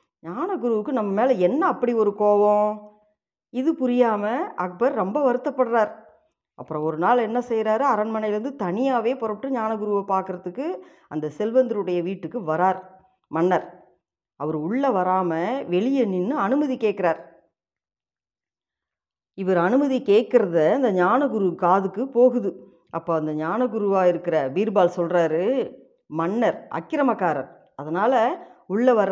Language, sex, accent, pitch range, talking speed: Tamil, female, native, 185-245 Hz, 105 wpm